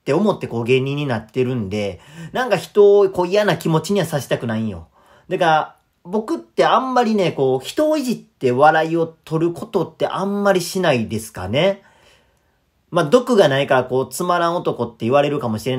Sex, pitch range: male, 125-200 Hz